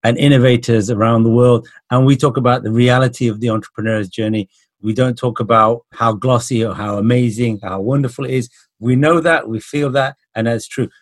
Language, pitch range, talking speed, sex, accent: English, 110-130 Hz, 200 wpm, male, British